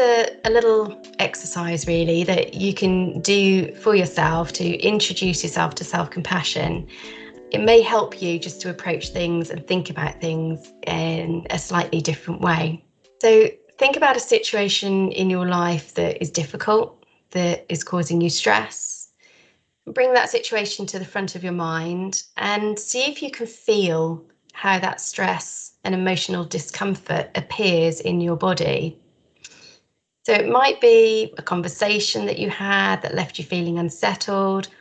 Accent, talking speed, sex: British, 150 wpm, female